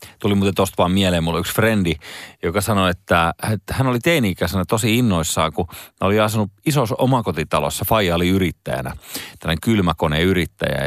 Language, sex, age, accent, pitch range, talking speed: Finnish, male, 30-49, native, 85-110 Hz, 155 wpm